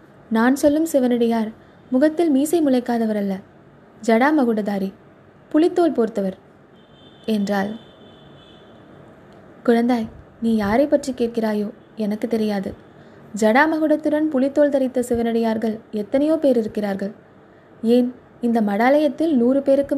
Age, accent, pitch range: 20-39, native, 220-280 Hz